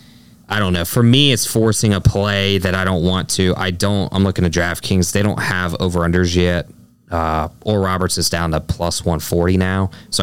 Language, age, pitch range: English, 20-39, 90-110 Hz